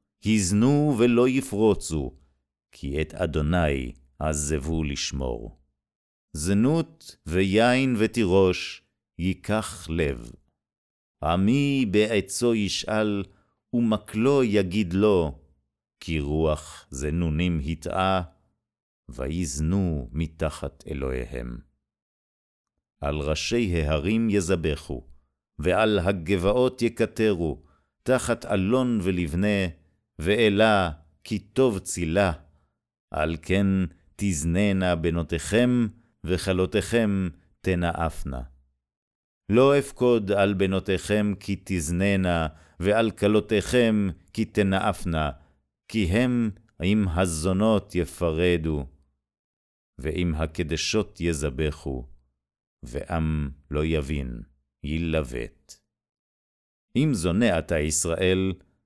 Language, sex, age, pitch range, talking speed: Hebrew, male, 50-69, 75-105 Hz, 75 wpm